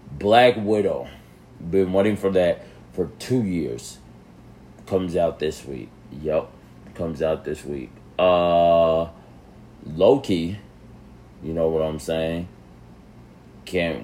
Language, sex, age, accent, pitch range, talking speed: English, male, 30-49, American, 75-90 Hz, 110 wpm